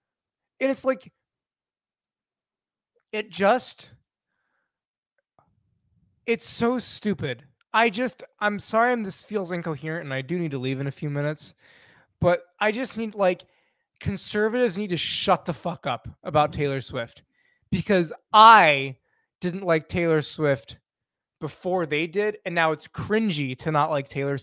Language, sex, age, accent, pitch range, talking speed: English, male, 20-39, American, 155-230 Hz, 140 wpm